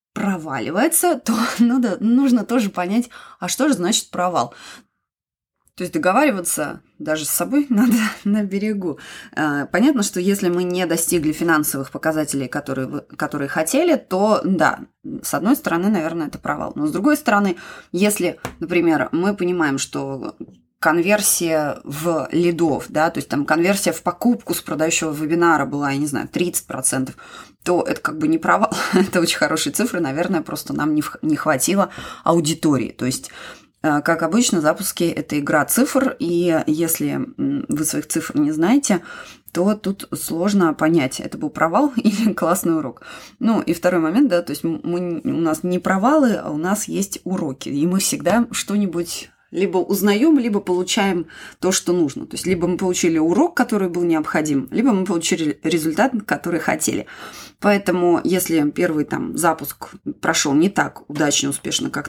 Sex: female